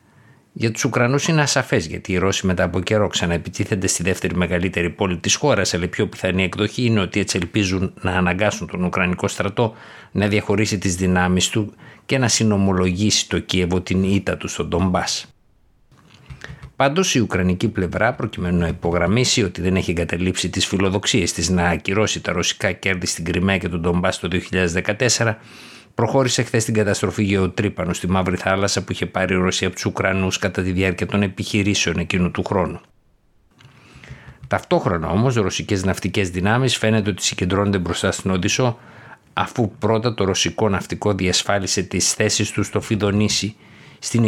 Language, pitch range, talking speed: Greek, 90-110 Hz, 165 wpm